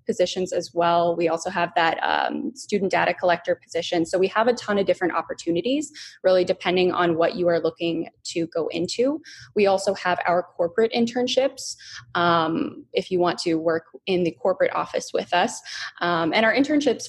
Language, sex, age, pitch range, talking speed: English, female, 20-39, 175-225 Hz, 185 wpm